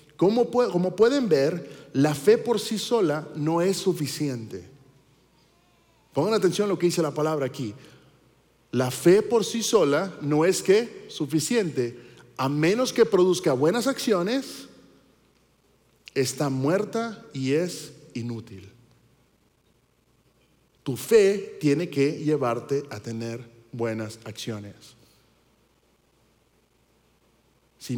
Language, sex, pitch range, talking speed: Spanish, male, 125-175 Hz, 105 wpm